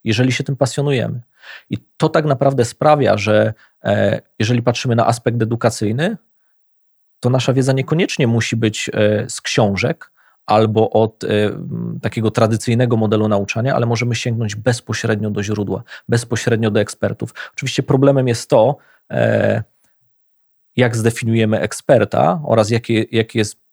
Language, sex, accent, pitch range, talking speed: Polish, male, native, 105-125 Hz, 120 wpm